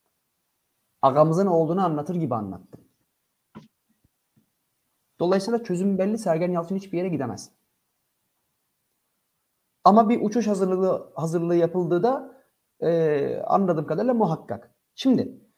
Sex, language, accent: male, Turkish, native